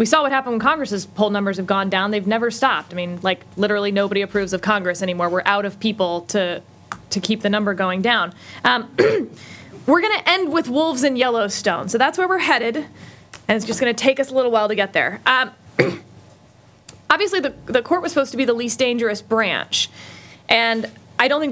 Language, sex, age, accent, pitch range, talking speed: English, female, 20-39, American, 210-285 Hz, 220 wpm